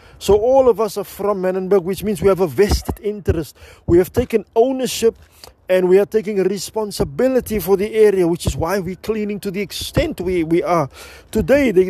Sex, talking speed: male, 195 wpm